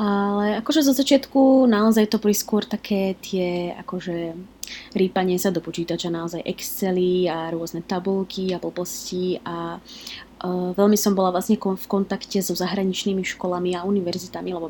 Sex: female